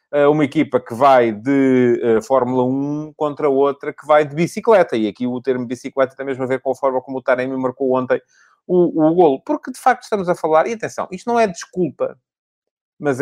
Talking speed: 220 wpm